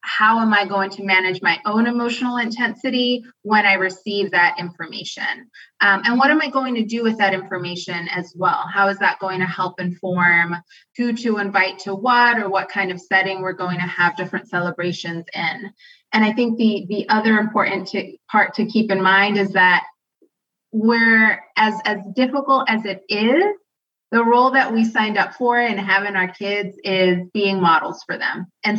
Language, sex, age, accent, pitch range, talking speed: English, female, 20-39, American, 185-220 Hz, 190 wpm